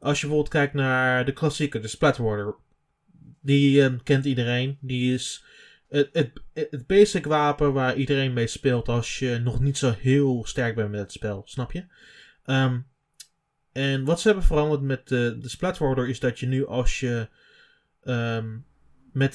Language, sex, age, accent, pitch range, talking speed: Dutch, male, 20-39, Dutch, 120-140 Hz, 170 wpm